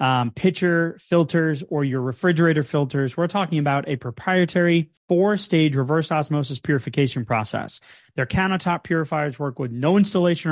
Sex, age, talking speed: male, 30-49, 145 wpm